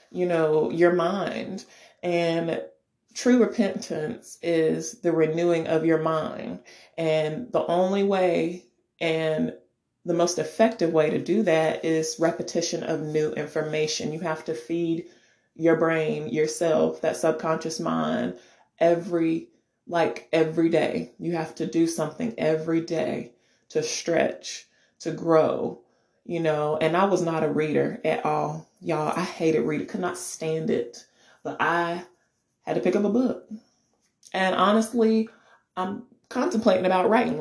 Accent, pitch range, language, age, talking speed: American, 155-180 Hz, English, 30-49, 140 wpm